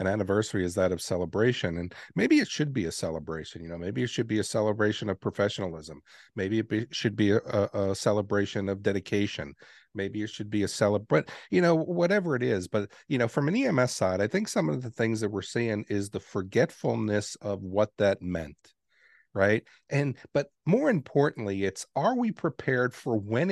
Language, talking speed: English, 200 wpm